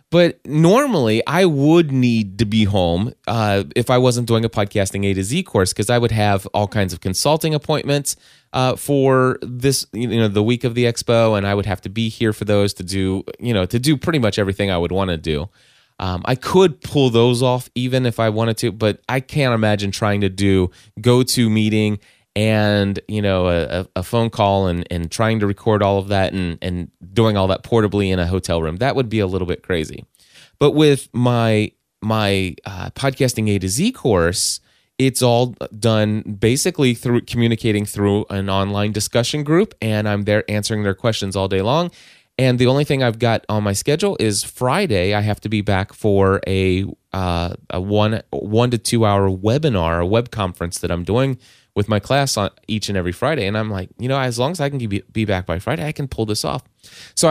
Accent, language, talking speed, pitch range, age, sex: American, English, 215 wpm, 100-125 Hz, 20-39, male